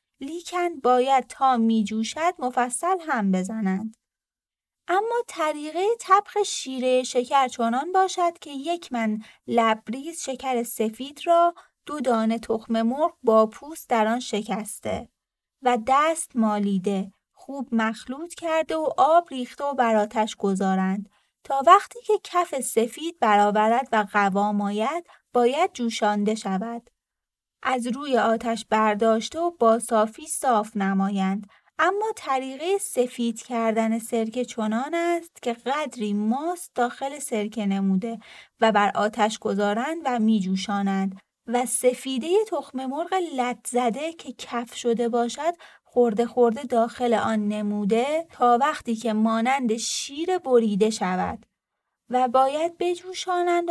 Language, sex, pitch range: Persian, female, 220-310 Hz